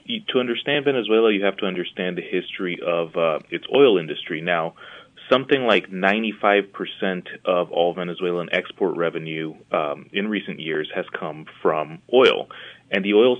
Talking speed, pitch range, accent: 150 wpm, 90-110 Hz, American